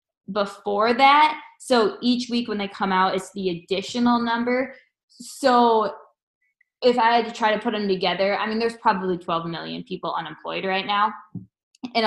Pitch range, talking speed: 185-230 Hz, 170 wpm